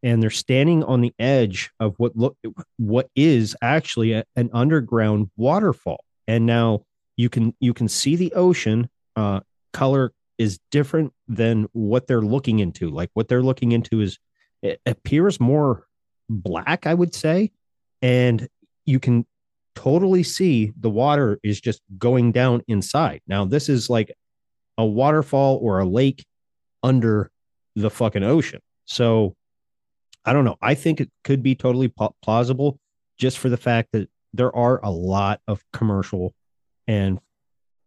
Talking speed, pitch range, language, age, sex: 150 wpm, 105-130 Hz, English, 30-49, male